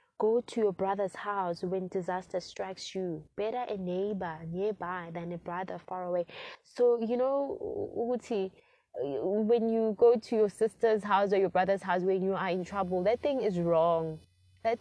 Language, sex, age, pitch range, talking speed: English, female, 20-39, 180-230 Hz, 175 wpm